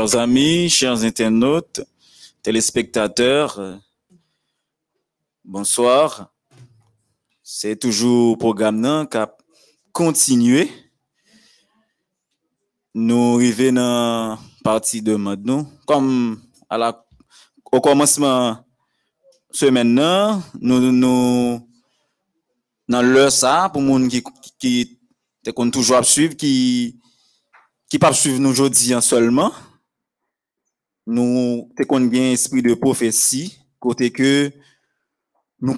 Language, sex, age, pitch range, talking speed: French, male, 20-39, 120-145 Hz, 90 wpm